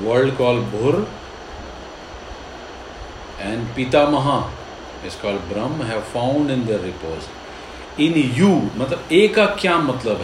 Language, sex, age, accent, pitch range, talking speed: Hindi, male, 50-69, native, 115-165 Hz, 115 wpm